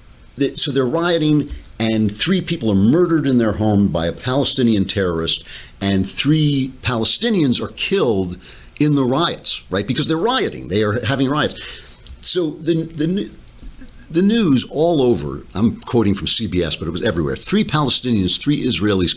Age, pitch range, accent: 50-69, 90-125 Hz, American